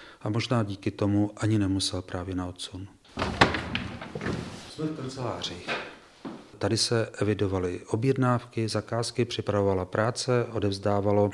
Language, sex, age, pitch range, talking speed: Czech, male, 40-59, 100-120 Hz, 100 wpm